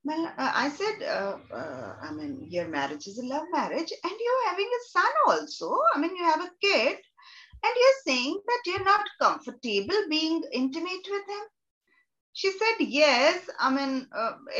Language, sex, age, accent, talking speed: English, female, 30-49, Indian, 175 wpm